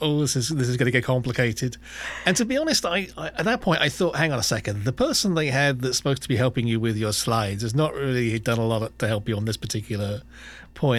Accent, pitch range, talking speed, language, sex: British, 110-130 Hz, 270 wpm, English, male